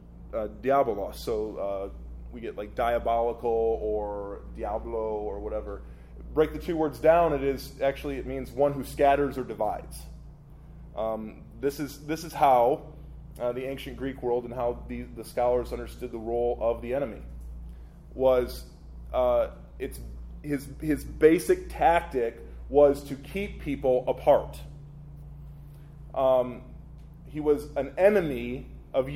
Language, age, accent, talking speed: English, 20-39, American, 140 wpm